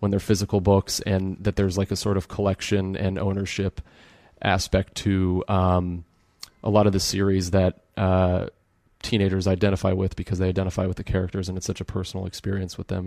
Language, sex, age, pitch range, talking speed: English, male, 30-49, 95-100 Hz, 190 wpm